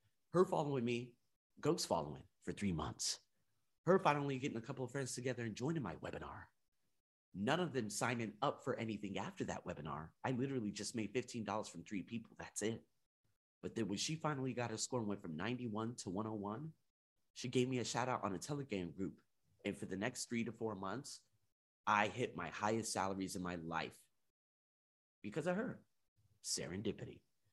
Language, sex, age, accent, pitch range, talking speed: English, male, 30-49, American, 100-135 Hz, 185 wpm